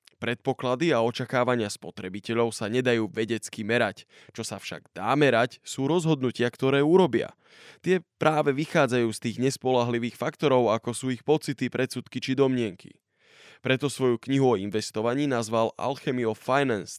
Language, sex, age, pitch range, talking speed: Slovak, male, 20-39, 110-135 Hz, 140 wpm